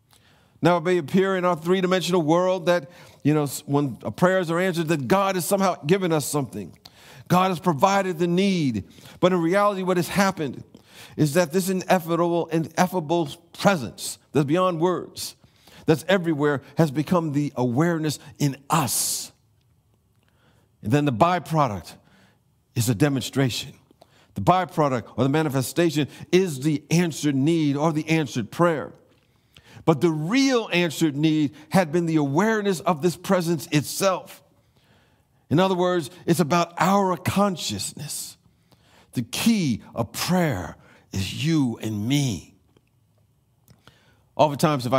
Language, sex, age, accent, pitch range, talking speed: English, male, 50-69, American, 125-175 Hz, 135 wpm